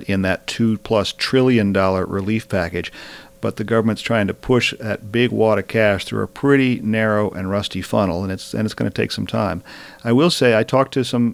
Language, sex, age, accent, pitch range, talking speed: English, male, 40-59, American, 110-125 Hz, 205 wpm